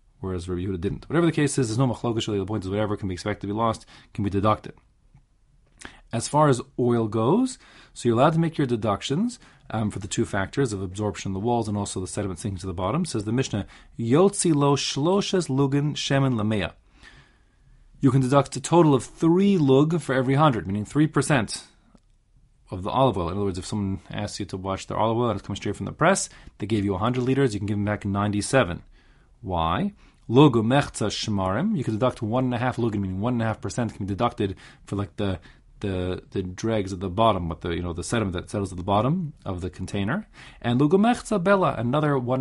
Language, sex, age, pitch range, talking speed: English, male, 30-49, 100-135 Hz, 215 wpm